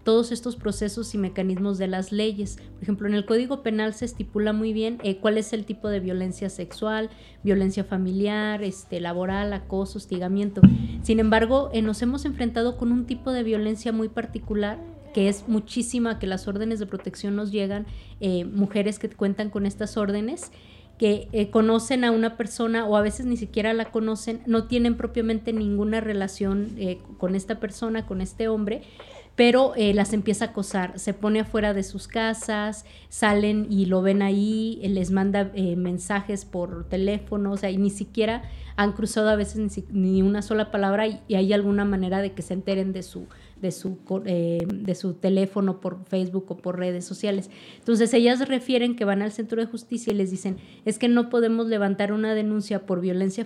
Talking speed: 185 wpm